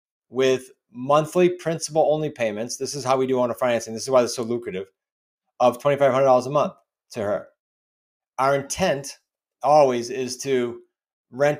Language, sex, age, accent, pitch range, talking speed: English, male, 30-49, American, 120-150 Hz, 155 wpm